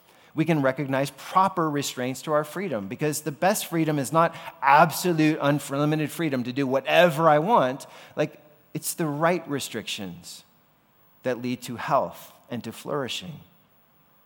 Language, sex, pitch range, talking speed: English, male, 115-155 Hz, 145 wpm